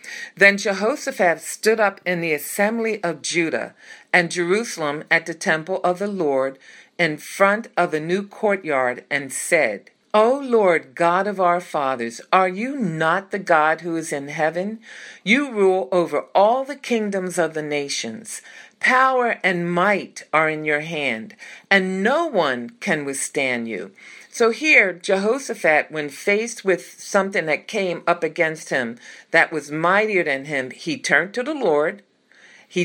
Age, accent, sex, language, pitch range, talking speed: 50-69, American, female, English, 165-235 Hz, 155 wpm